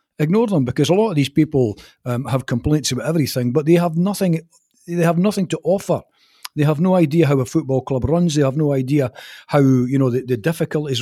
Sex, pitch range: male, 125-170 Hz